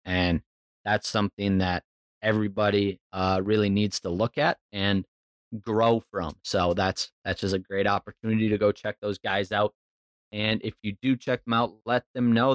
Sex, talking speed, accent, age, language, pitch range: male, 175 wpm, American, 30-49, English, 95-120 Hz